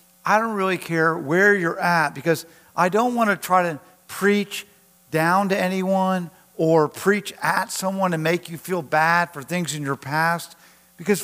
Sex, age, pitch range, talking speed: male, 50-69, 155-195 Hz, 170 wpm